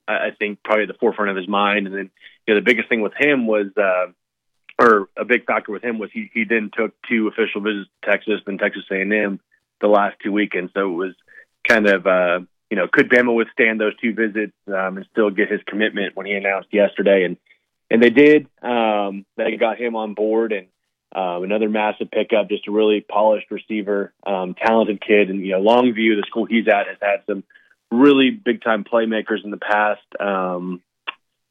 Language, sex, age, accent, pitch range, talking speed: English, male, 20-39, American, 100-115 Hz, 210 wpm